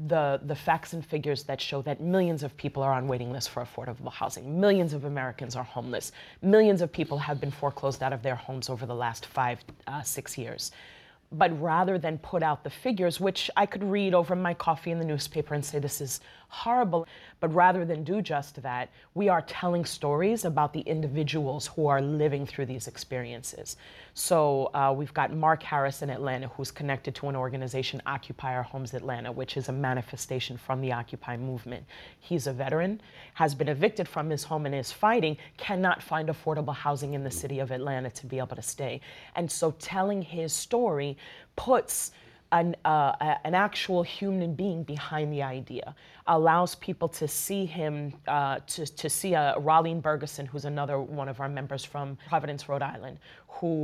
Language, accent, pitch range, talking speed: English, American, 135-170 Hz, 190 wpm